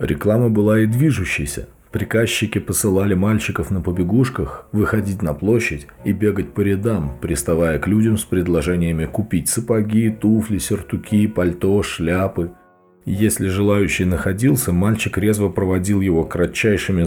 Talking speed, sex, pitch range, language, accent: 125 wpm, male, 85-110 Hz, Russian, native